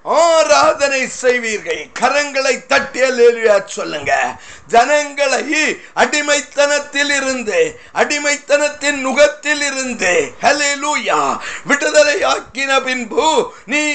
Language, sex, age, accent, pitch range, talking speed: Tamil, male, 50-69, native, 260-300 Hz, 45 wpm